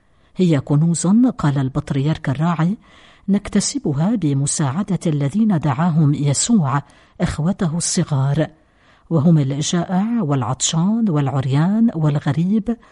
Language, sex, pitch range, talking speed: Arabic, female, 145-185 Hz, 80 wpm